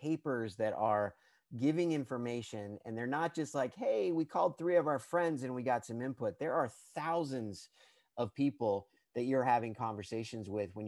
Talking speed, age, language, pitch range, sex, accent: 180 wpm, 30-49, English, 110-145 Hz, male, American